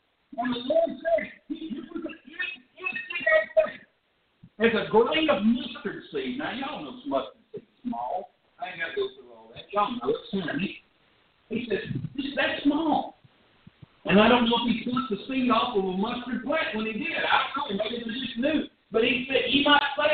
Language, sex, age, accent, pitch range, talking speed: English, male, 50-69, American, 220-305 Hz, 130 wpm